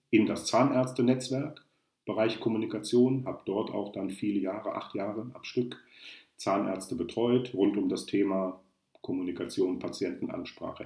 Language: German